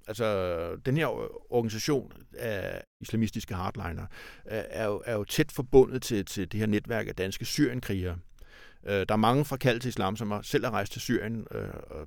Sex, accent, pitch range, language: male, native, 95-125 Hz, Danish